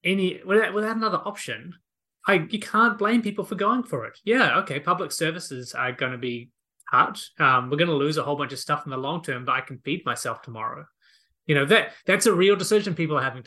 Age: 30-49